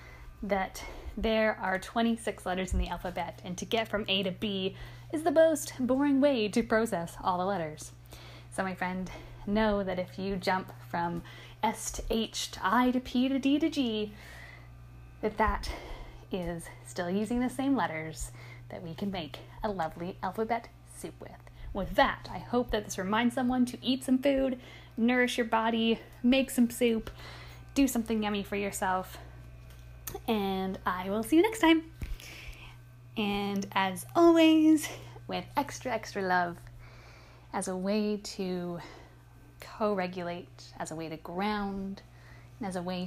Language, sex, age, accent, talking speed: English, female, 10-29, American, 155 wpm